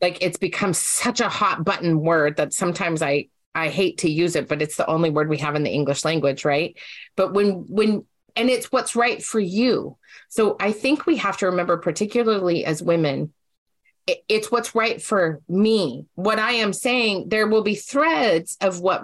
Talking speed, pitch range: 195 wpm, 170-225 Hz